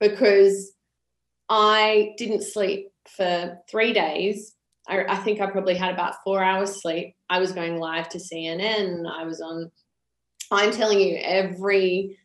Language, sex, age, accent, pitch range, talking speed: English, female, 20-39, Australian, 175-200 Hz, 145 wpm